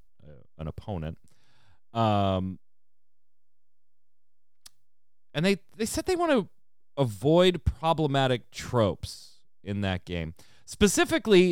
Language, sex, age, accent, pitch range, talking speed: English, male, 30-49, American, 105-140 Hz, 90 wpm